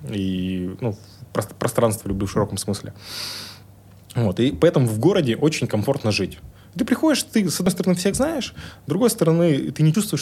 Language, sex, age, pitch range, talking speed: Russian, male, 20-39, 100-140 Hz, 170 wpm